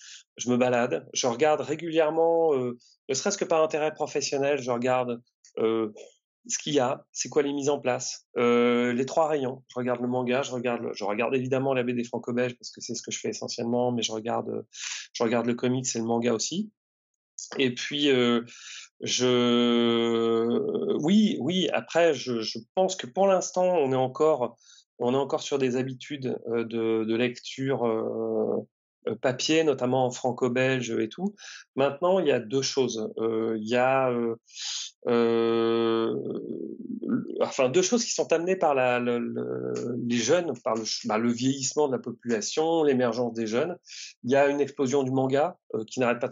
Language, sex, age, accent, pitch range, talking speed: French, male, 30-49, French, 120-140 Hz, 180 wpm